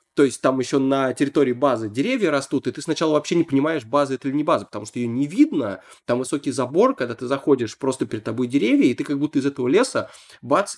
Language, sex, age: Russian, male, 20-39